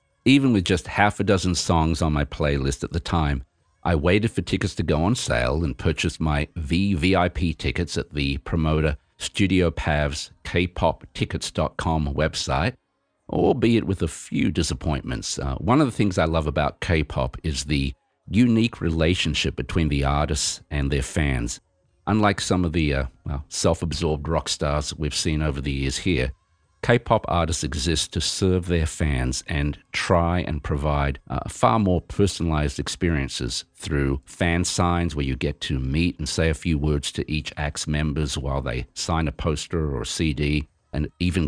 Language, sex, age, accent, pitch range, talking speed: English, male, 50-69, Australian, 75-90 Hz, 165 wpm